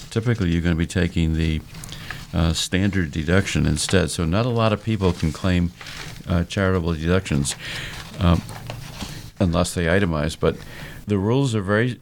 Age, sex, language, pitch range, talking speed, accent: 50-69, male, English, 85-110 Hz, 155 wpm, American